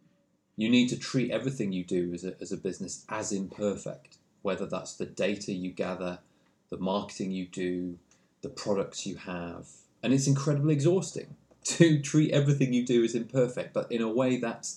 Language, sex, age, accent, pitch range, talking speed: English, male, 30-49, British, 90-115 Hz, 180 wpm